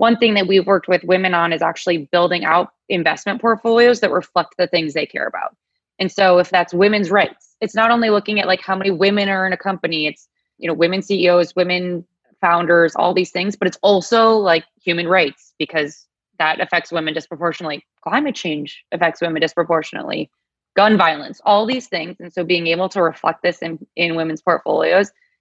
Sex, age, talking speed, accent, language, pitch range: female, 20-39, 195 wpm, American, English, 170-215 Hz